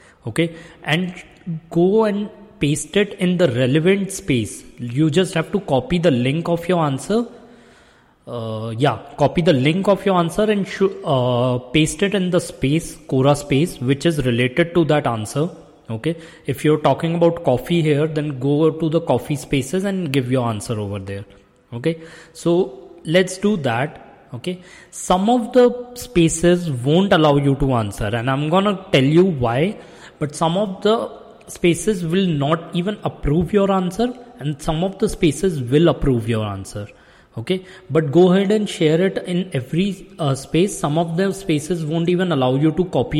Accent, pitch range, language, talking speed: Indian, 135-185 Hz, English, 175 wpm